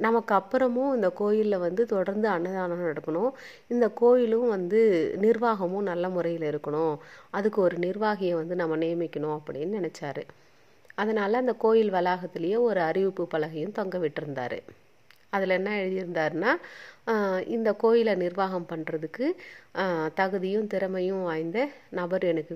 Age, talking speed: 30-49, 115 wpm